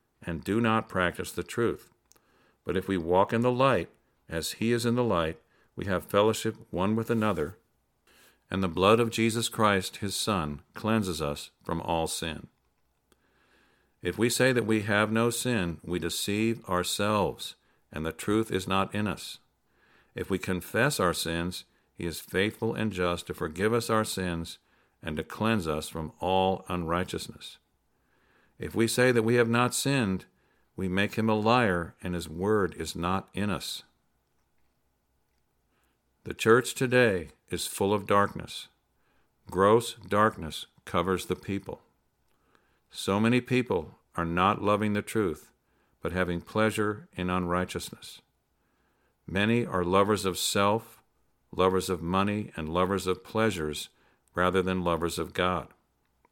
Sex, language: male, English